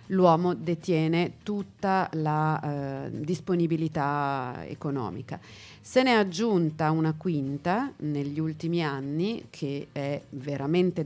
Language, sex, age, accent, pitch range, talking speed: Italian, female, 40-59, native, 145-170 Hz, 105 wpm